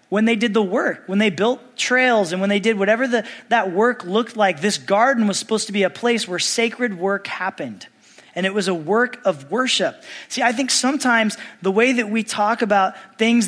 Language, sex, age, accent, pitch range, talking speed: English, male, 20-39, American, 195-235 Hz, 215 wpm